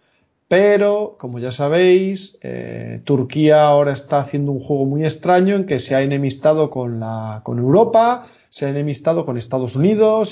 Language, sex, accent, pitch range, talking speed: Spanish, male, Spanish, 115-150 Hz, 155 wpm